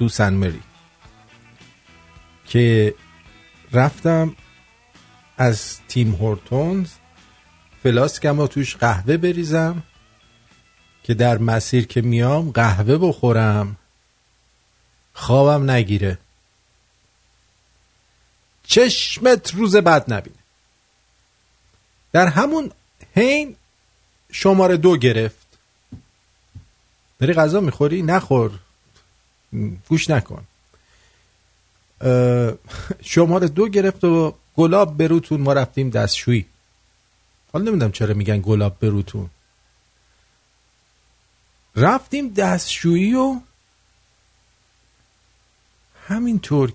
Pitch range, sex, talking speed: 100-150 Hz, male, 70 wpm